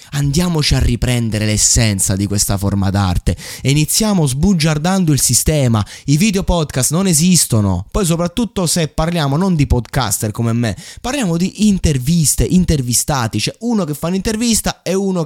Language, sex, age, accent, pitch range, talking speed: Italian, male, 20-39, native, 115-175 Hz, 155 wpm